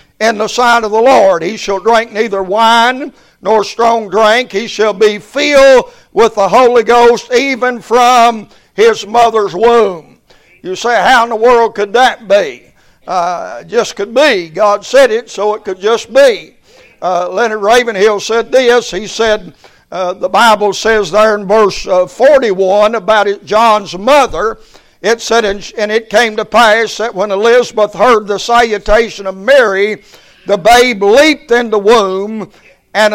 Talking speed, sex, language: 165 wpm, male, English